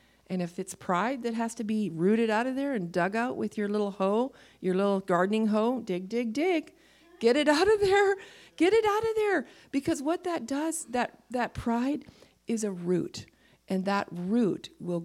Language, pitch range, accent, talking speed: English, 190-255 Hz, American, 200 wpm